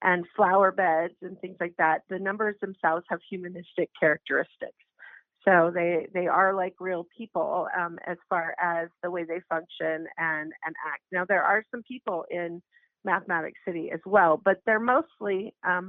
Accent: American